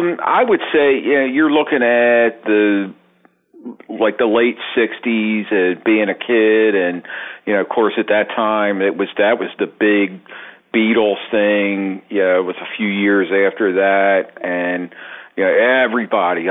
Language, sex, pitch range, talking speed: English, male, 95-110 Hz, 170 wpm